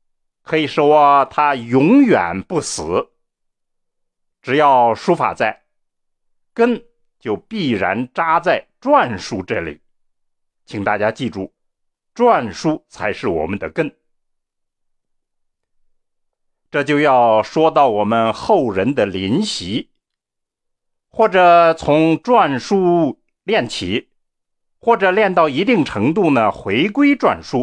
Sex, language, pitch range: male, Chinese, 115-190 Hz